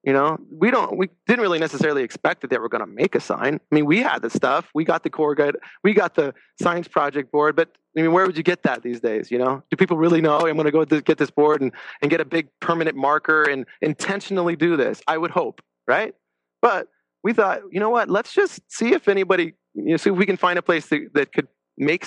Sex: male